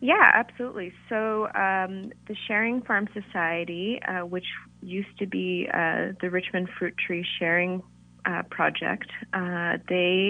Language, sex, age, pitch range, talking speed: English, female, 30-49, 165-185 Hz, 135 wpm